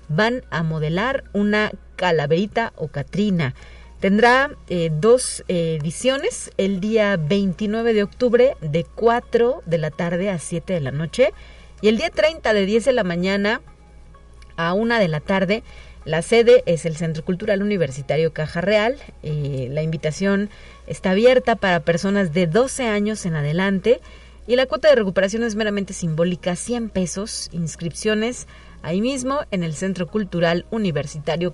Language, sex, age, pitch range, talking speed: Spanish, female, 40-59, 165-220 Hz, 150 wpm